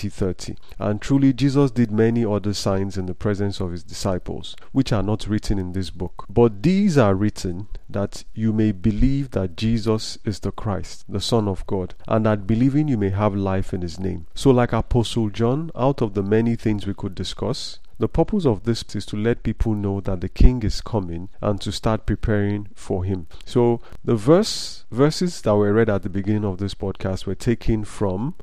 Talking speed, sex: 200 wpm, male